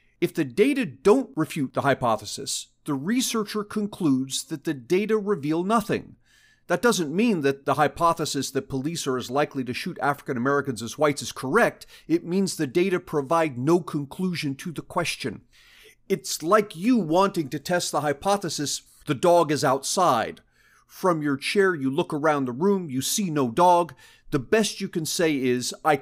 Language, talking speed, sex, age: English, 175 wpm, male, 40-59